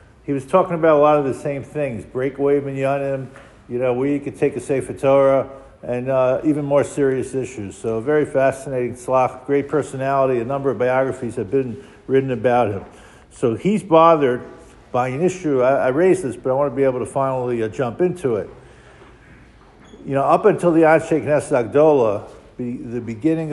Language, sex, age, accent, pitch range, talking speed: English, male, 50-69, American, 125-150 Hz, 190 wpm